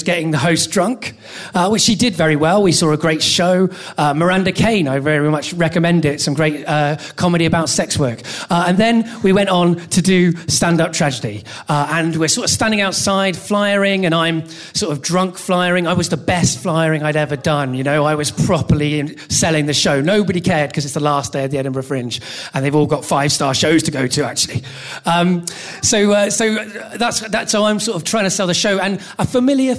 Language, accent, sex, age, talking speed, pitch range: English, British, male, 30-49, 220 wpm, 150-200 Hz